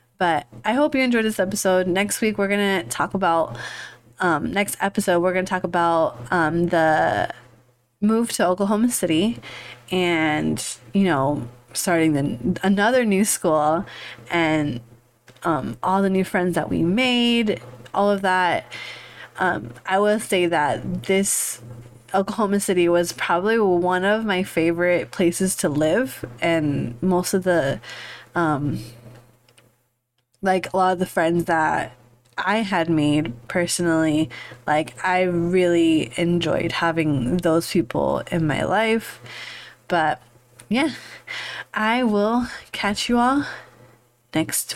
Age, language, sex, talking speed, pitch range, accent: 20-39, English, female, 130 wpm, 150-200 Hz, American